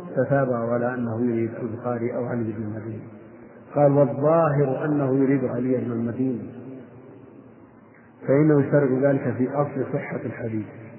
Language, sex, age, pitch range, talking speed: Arabic, male, 50-69, 120-145 Hz, 130 wpm